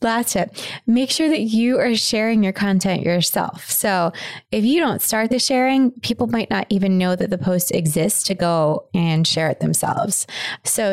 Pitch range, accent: 170-215 Hz, American